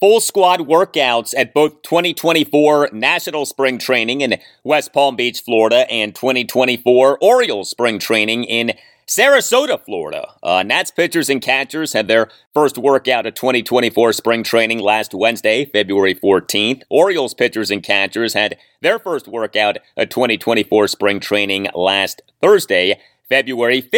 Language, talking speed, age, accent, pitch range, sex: English, 135 wpm, 30-49, American, 115-140 Hz, male